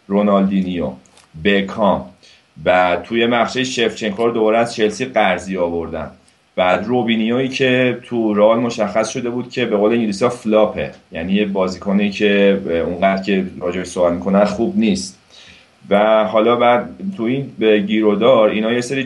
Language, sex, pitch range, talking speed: Persian, male, 95-115 Hz, 145 wpm